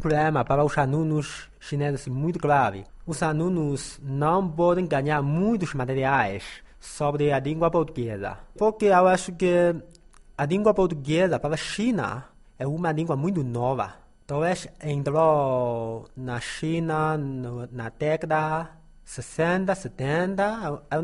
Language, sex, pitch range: Chinese, male, 135-175 Hz